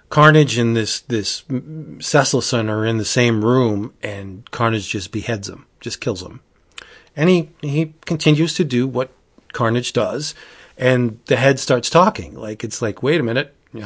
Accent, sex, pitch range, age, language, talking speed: American, male, 110-160 Hz, 30-49, English, 165 wpm